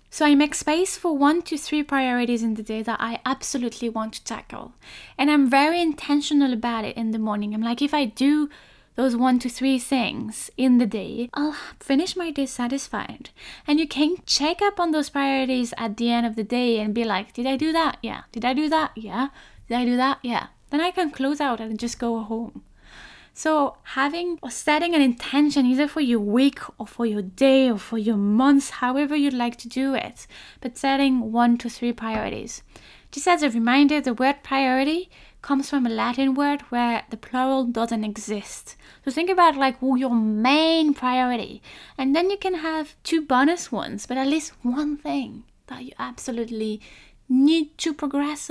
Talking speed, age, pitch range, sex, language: 195 wpm, 10-29, 235-290 Hz, female, English